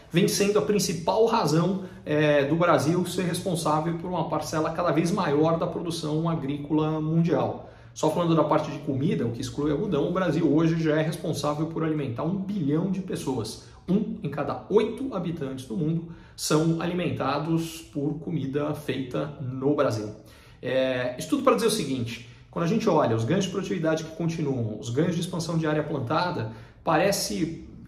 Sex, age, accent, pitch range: male, 40-59, Brazilian, 140-170 Hz